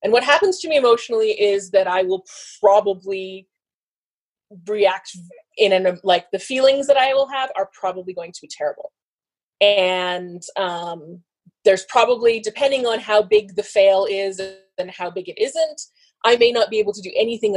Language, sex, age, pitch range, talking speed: English, female, 20-39, 185-255 Hz, 175 wpm